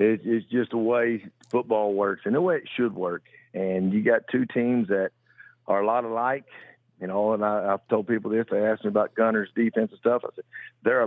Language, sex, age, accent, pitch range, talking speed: English, male, 50-69, American, 105-125 Hz, 220 wpm